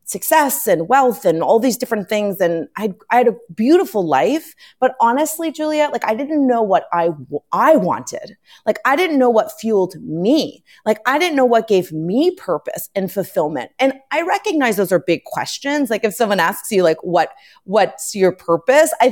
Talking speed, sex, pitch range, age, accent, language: 190 wpm, female, 195-265 Hz, 30-49, American, English